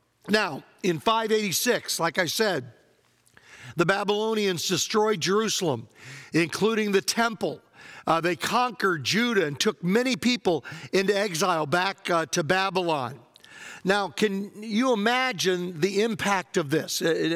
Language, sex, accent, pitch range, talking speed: English, male, American, 175-220 Hz, 125 wpm